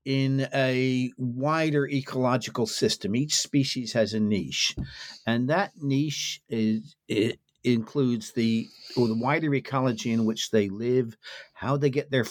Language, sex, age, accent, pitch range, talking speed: English, male, 60-79, American, 115-140 Hz, 135 wpm